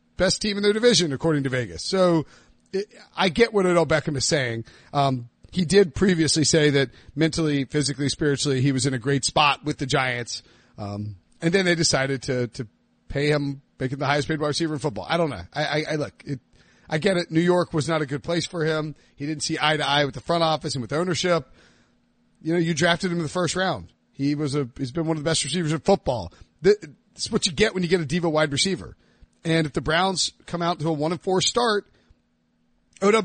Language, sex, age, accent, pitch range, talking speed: English, male, 40-59, American, 140-180 Hz, 235 wpm